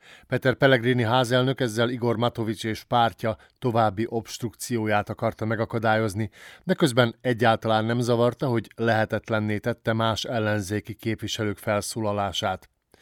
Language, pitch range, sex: Hungarian, 110-125 Hz, male